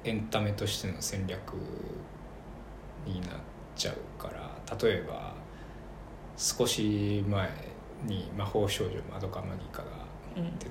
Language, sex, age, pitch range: Japanese, male, 20-39, 95-110 Hz